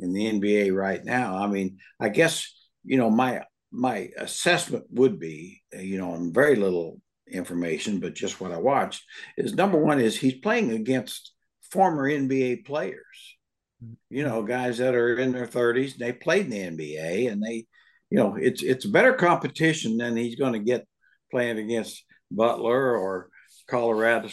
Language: English